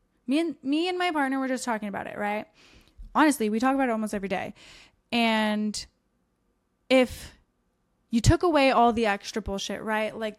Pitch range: 205-250 Hz